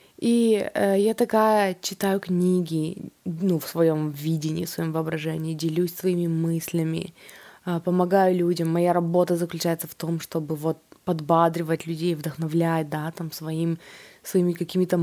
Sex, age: female, 20-39